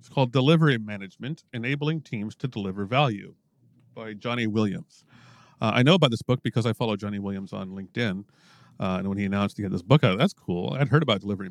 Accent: American